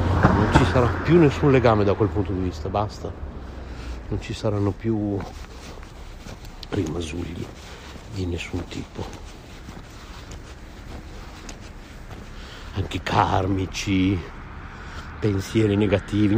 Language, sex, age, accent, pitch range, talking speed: Italian, male, 60-79, native, 80-105 Hz, 90 wpm